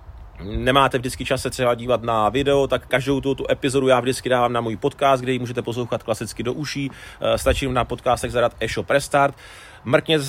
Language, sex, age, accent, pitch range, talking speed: Czech, male, 30-49, native, 115-140 Hz, 195 wpm